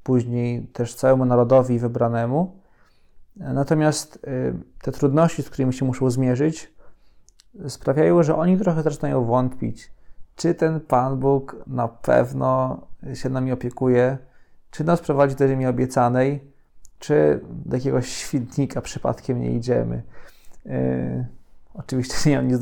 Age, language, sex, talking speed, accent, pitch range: 20-39, Polish, male, 125 wpm, native, 125-155 Hz